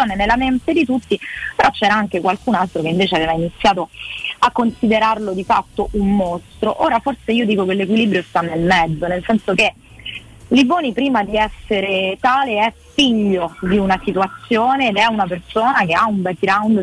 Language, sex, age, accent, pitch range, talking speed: Italian, female, 20-39, native, 190-240 Hz, 175 wpm